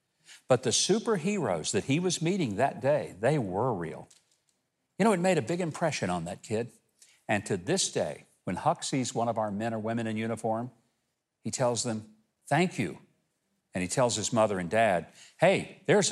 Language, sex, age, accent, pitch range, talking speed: English, male, 50-69, American, 115-170 Hz, 190 wpm